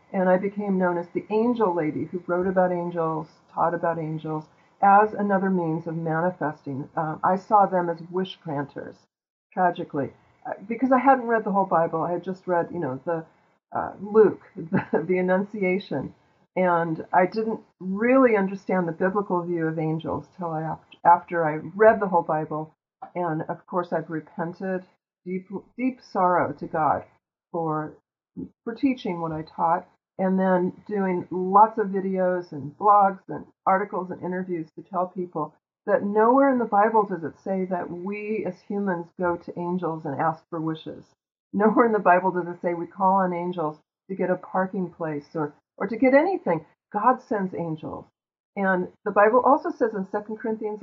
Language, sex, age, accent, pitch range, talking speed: English, female, 40-59, American, 170-205 Hz, 175 wpm